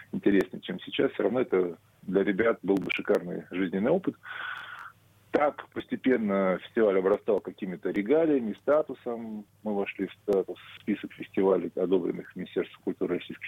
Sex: male